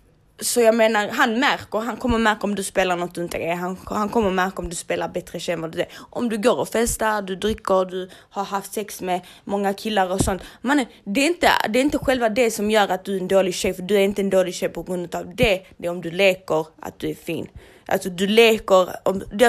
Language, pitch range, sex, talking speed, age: Swedish, 195-235 Hz, female, 245 wpm, 20-39